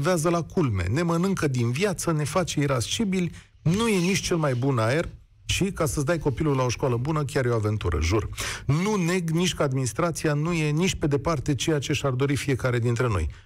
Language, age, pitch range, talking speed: Romanian, 40-59, 130-185 Hz, 210 wpm